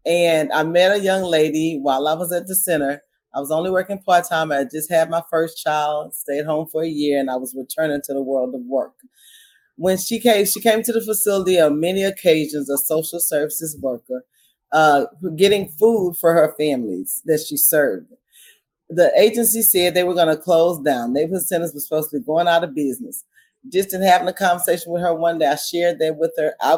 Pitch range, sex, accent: 155-190 Hz, female, American